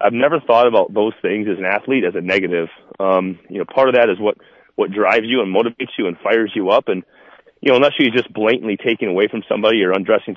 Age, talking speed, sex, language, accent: 30-49, 250 wpm, male, English, American